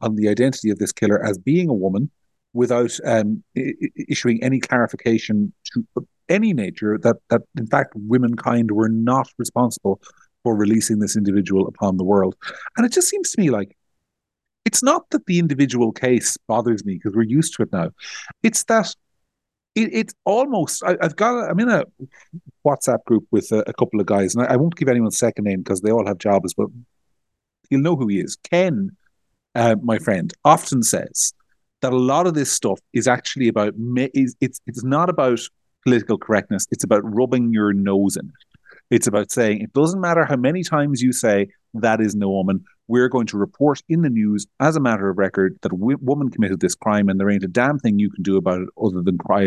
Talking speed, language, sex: 205 wpm, English, male